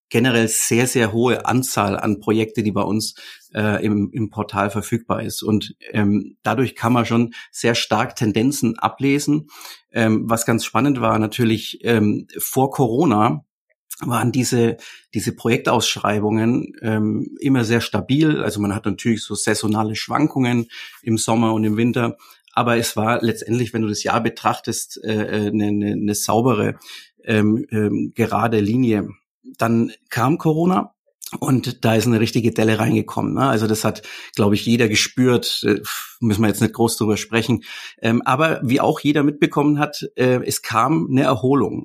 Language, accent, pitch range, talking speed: German, German, 110-125 Hz, 155 wpm